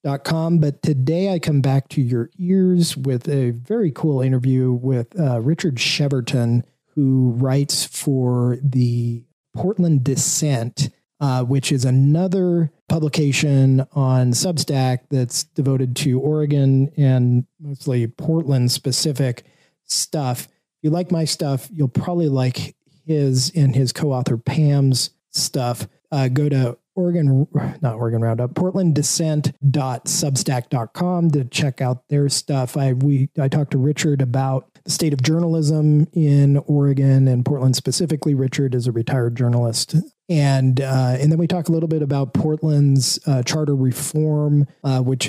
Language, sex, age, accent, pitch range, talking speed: English, male, 40-59, American, 130-155 Hz, 140 wpm